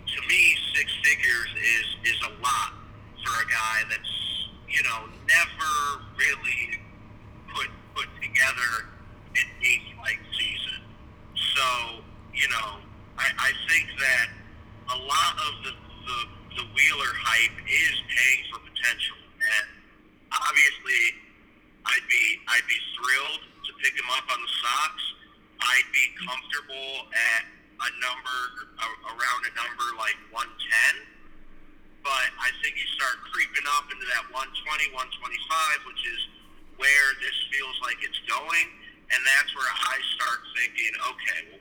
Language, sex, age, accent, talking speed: English, male, 40-59, American, 135 wpm